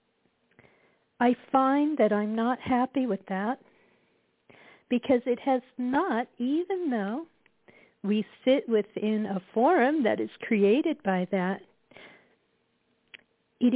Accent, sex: American, female